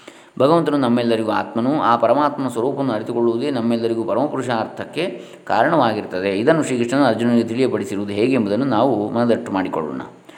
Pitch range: 110-125 Hz